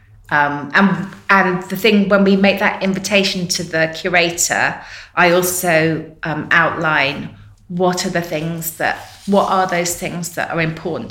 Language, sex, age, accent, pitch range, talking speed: English, female, 30-49, British, 160-185 Hz, 155 wpm